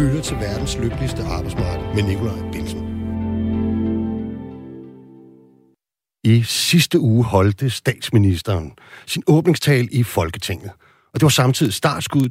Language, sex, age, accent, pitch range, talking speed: Danish, male, 60-79, native, 100-140 Hz, 100 wpm